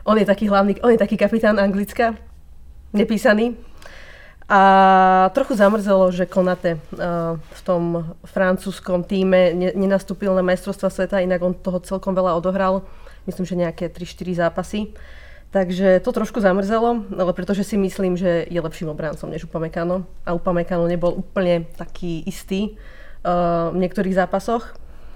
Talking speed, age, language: 135 wpm, 30-49, Slovak